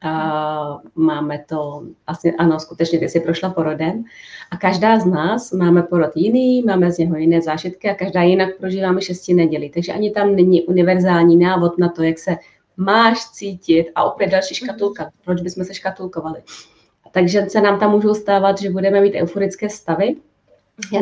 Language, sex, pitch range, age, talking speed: Czech, female, 175-235 Hz, 30-49, 170 wpm